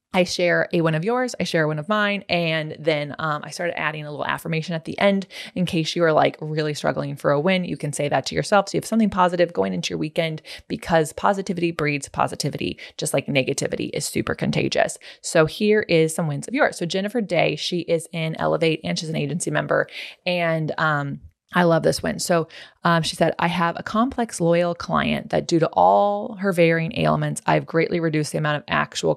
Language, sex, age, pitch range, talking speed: English, female, 20-39, 155-190 Hz, 220 wpm